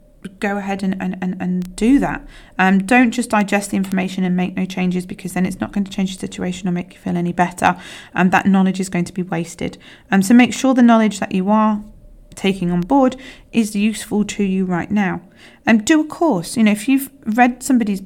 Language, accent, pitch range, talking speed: English, British, 185-225 Hz, 240 wpm